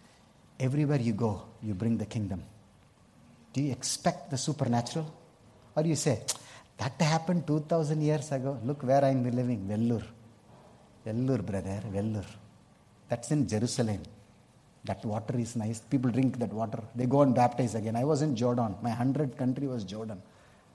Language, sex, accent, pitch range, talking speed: English, male, Indian, 115-160 Hz, 160 wpm